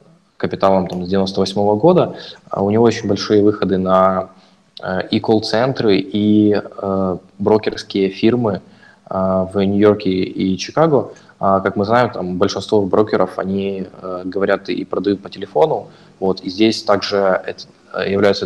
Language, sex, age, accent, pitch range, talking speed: Russian, male, 20-39, native, 95-105 Hz, 115 wpm